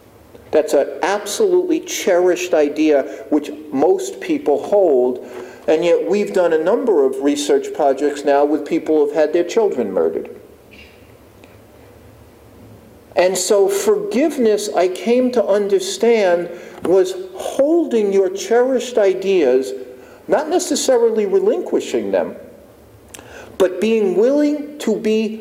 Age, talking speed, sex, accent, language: 50-69, 115 wpm, male, American, English